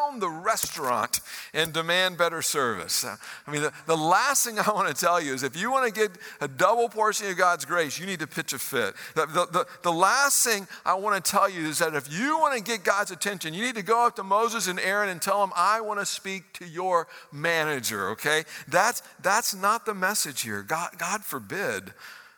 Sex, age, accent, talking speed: male, 50-69, American, 225 wpm